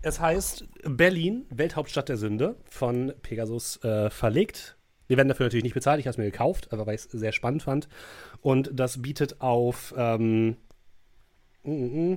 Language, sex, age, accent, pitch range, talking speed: German, male, 30-49, German, 110-135 Hz, 165 wpm